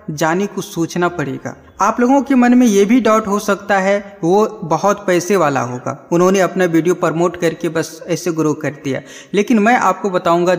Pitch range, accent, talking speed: 165-210 Hz, native, 195 wpm